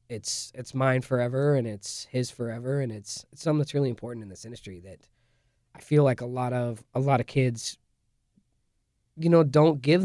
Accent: American